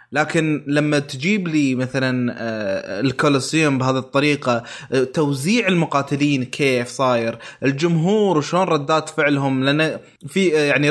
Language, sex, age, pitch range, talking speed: Arabic, male, 20-39, 130-165 Hz, 105 wpm